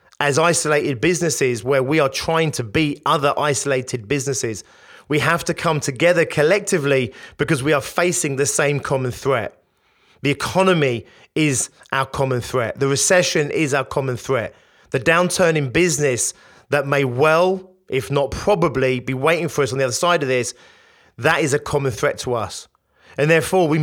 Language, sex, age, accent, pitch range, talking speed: English, male, 30-49, British, 135-160 Hz, 170 wpm